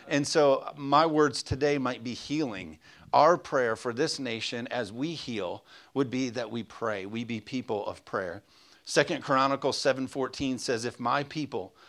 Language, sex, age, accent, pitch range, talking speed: English, male, 40-59, American, 110-140 Hz, 165 wpm